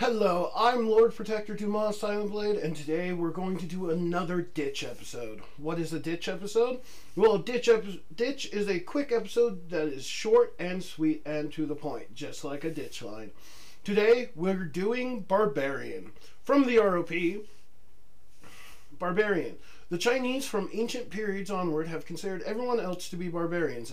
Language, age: English, 40-59